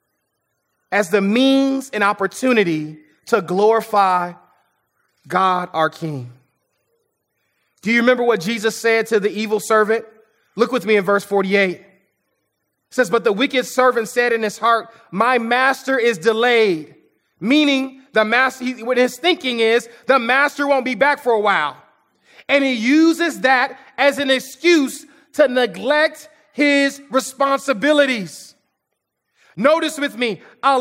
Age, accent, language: 30-49, American, English